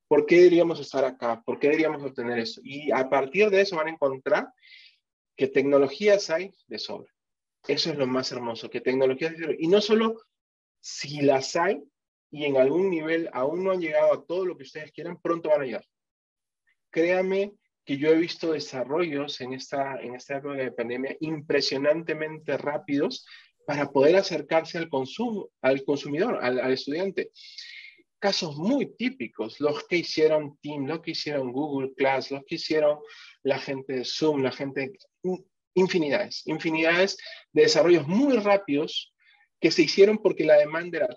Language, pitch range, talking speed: Spanish, 135-195 Hz, 170 wpm